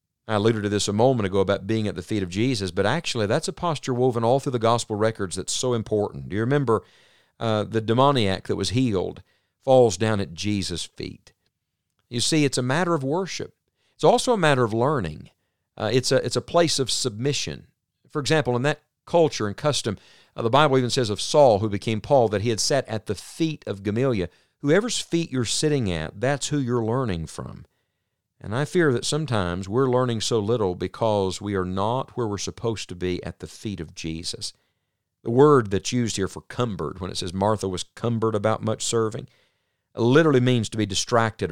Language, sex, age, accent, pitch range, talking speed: English, male, 50-69, American, 100-130 Hz, 205 wpm